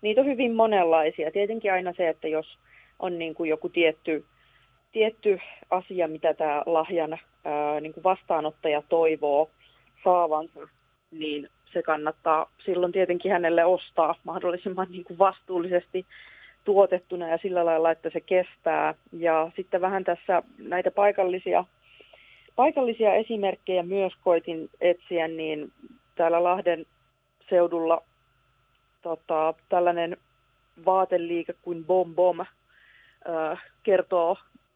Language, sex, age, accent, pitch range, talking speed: Finnish, female, 30-49, native, 160-185 Hz, 100 wpm